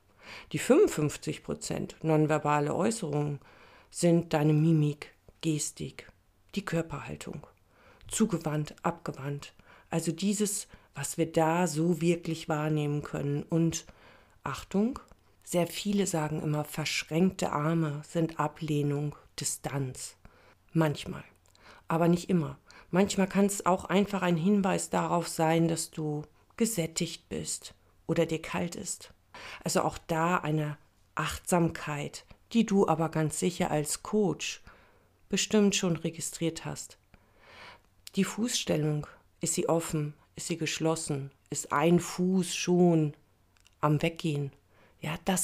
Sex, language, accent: female, German, German